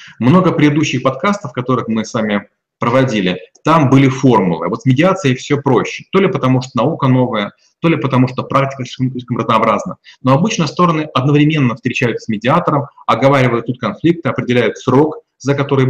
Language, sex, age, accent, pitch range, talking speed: Russian, male, 30-49, native, 125-155 Hz, 165 wpm